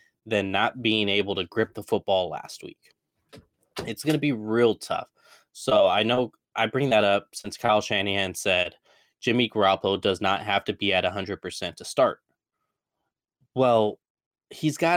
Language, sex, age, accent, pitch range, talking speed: English, male, 20-39, American, 100-120 Hz, 165 wpm